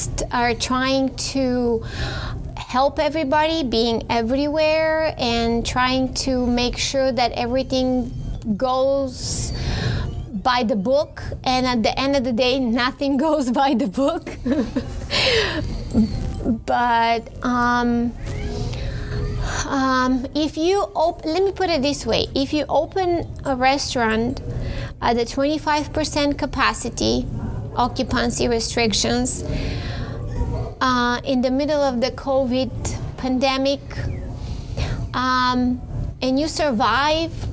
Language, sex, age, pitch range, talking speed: English, female, 20-39, 240-285 Hz, 100 wpm